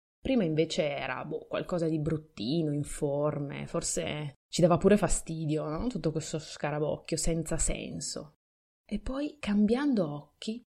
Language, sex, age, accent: Italian, female, 20-39, native